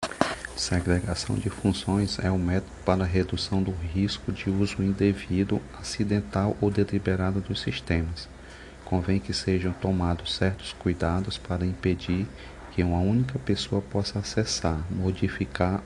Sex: male